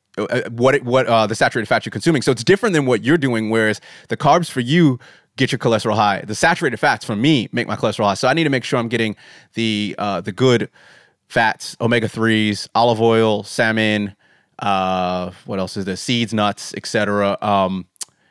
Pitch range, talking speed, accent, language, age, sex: 110-135 Hz, 205 wpm, American, English, 30-49, male